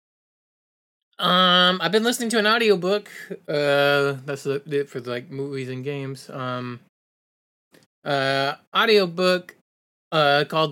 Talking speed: 110 wpm